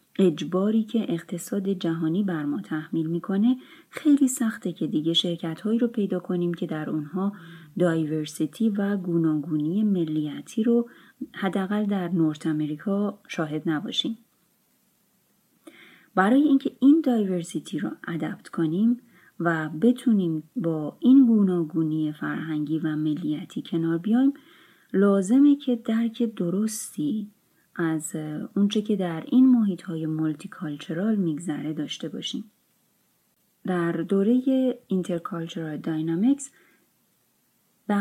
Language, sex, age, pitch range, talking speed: Persian, female, 30-49, 165-235 Hz, 110 wpm